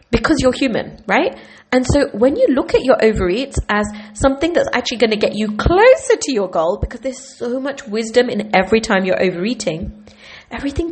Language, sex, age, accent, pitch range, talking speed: English, female, 30-49, British, 185-255 Hz, 190 wpm